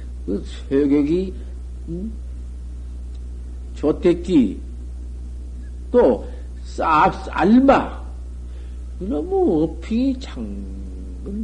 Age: 60-79